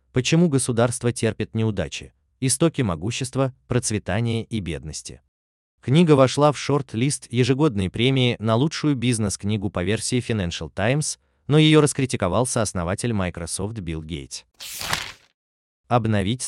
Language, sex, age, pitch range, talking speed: Russian, male, 30-49, 85-130 Hz, 110 wpm